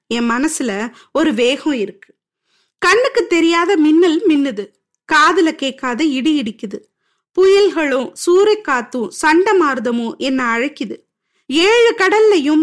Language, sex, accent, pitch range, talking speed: Tamil, female, native, 260-355 Hz, 75 wpm